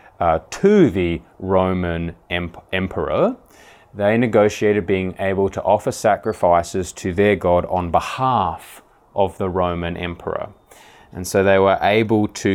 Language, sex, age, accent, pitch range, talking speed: English, male, 30-49, Australian, 90-110 Hz, 130 wpm